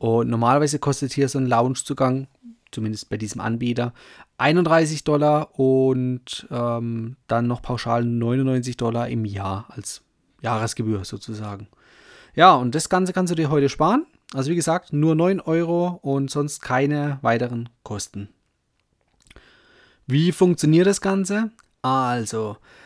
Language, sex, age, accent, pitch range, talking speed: German, male, 30-49, German, 120-160 Hz, 130 wpm